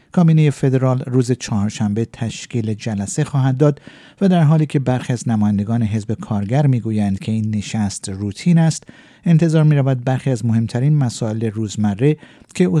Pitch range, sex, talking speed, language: 110-150 Hz, male, 145 wpm, Persian